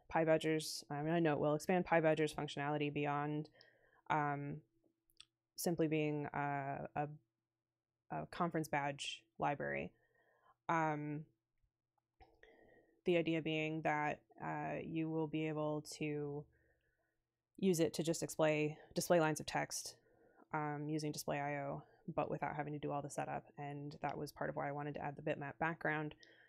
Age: 20-39